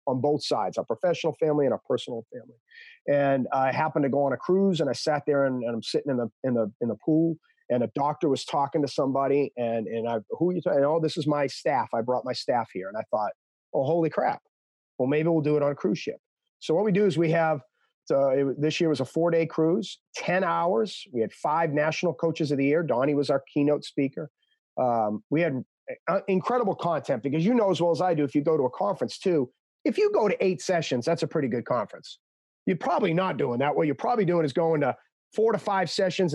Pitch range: 140-185 Hz